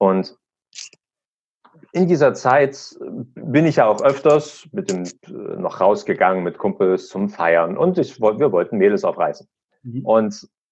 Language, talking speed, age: German, 135 wpm, 40-59